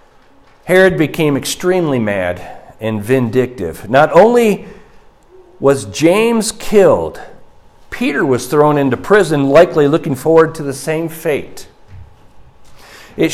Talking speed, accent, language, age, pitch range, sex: 110 wpm, American, English, 50-69, 110-170 Hz, male